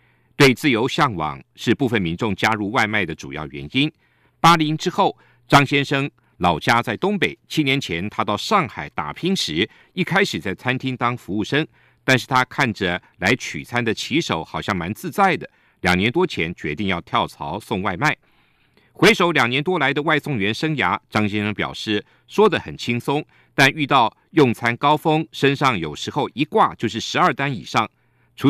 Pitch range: 105-150 Hz